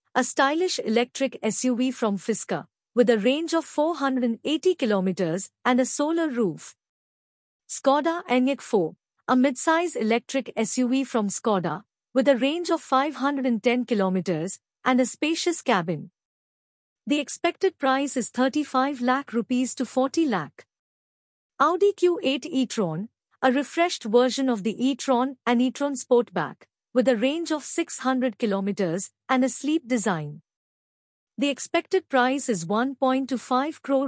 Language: English